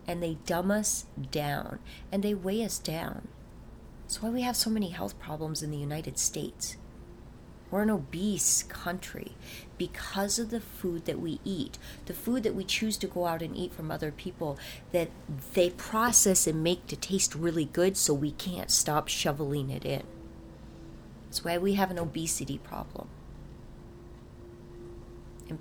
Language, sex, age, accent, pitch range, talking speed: English, female, 30-49, American, 145-180 Hz, 165 wpm